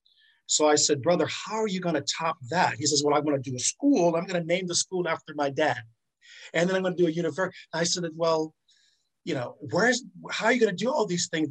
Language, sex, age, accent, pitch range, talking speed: English, male, 50-69, American, 135-170 Hz, 270 wpm